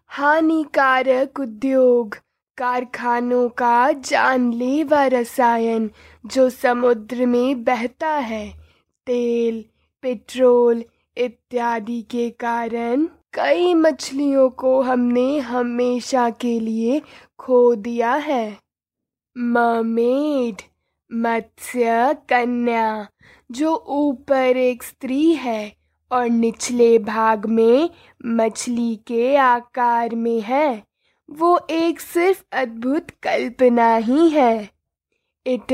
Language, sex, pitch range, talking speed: Hindi, female, 235-270 Hz, 85 wpm